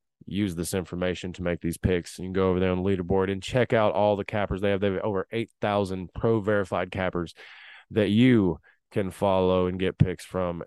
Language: English